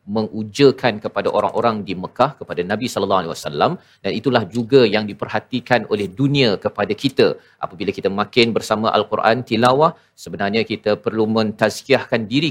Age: 40-59